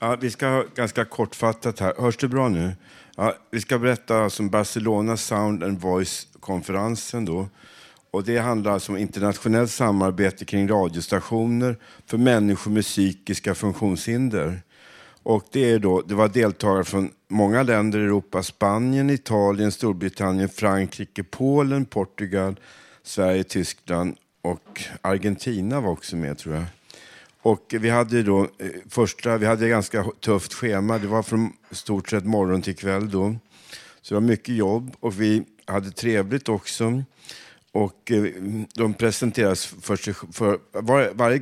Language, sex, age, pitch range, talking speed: Swedish, male, 50-69, 95-115 Hz, 145 wpm